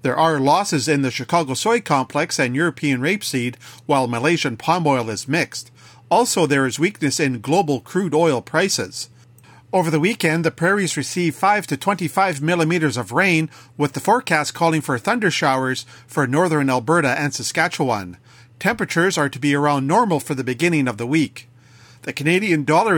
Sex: male